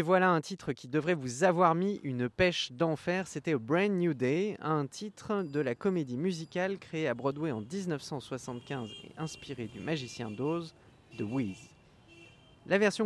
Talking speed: 170 wpm